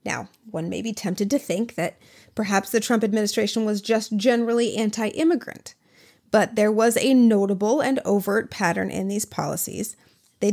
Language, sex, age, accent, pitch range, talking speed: English, female, 30-49, American, 210-240 Hz, 160 wpm